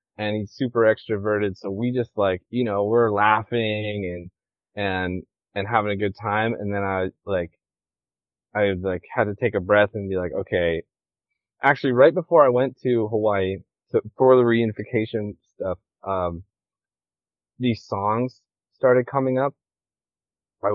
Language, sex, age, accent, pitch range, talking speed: English, male, 20-39, American, 95-110 Hz, 150 wpm